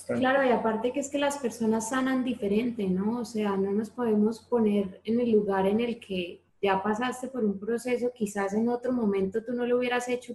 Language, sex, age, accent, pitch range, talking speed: Spanish, female, 20-39, Colombian, 210-245 Hz, 215 wpm